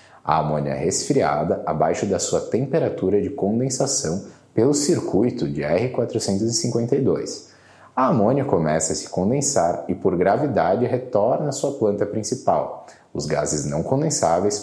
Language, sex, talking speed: Portuguese, male, 130 wpm